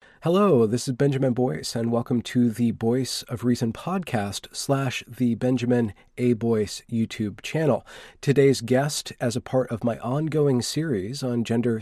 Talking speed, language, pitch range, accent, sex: 155 wpm, English, 110-130 Hz, American, male